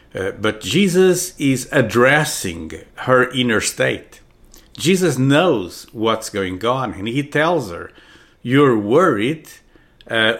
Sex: male